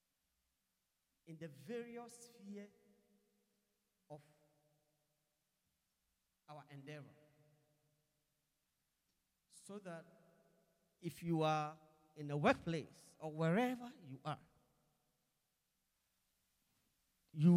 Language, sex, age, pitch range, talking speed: English, male, 40-59, 150-200 Hz, 70 wpm